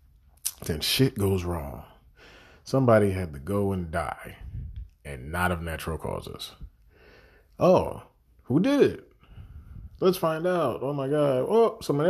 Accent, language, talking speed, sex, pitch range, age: American, English, 135 wpm, male, 95-135 Hz, 30-49